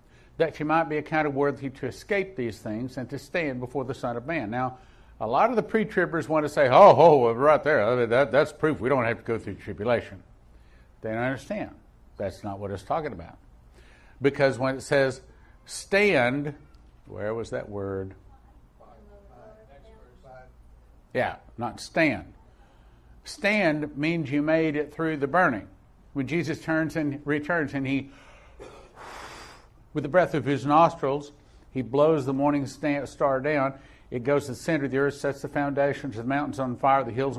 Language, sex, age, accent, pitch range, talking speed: English, male, 50-69, American, 120-145 Hz, 180 wpm